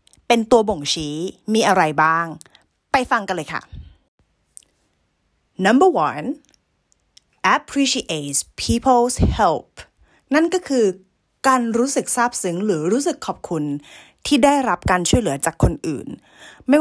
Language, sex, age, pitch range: Thai, female, 20-39, 155-235 Hz